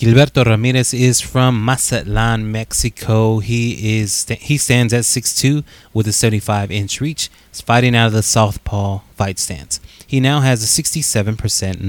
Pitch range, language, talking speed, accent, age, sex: 105-135 Hz, English, 150 wpm, American, 20-39, male